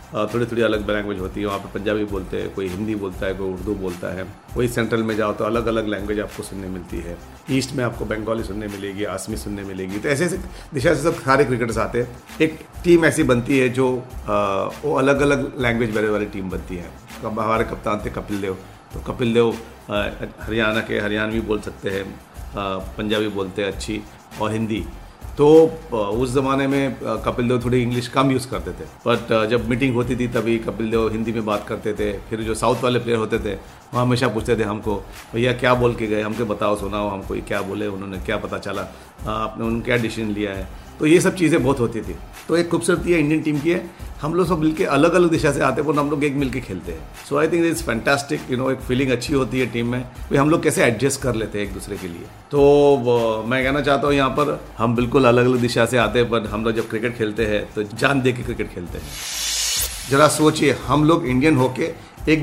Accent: native